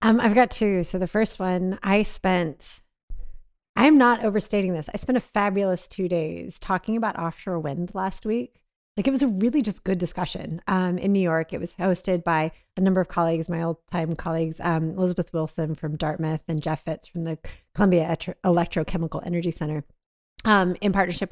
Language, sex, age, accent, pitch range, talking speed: English, female, 30-49, American, 165-205 Hz, 190 wpm